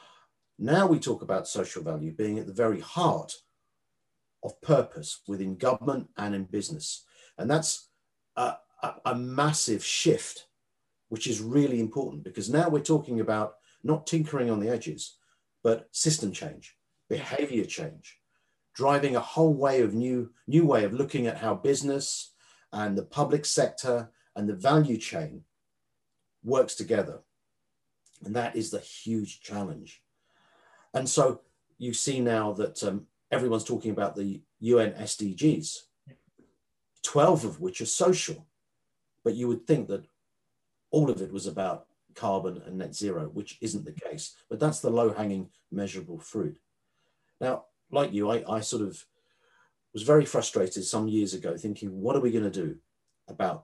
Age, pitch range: 50-69, 105-140 Hz